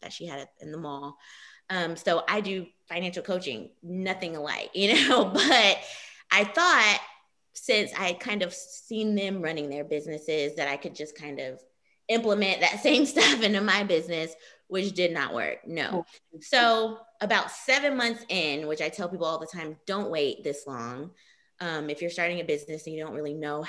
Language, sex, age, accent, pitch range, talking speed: English, female, 20-39, American, 155-205 Hz, 185 wpm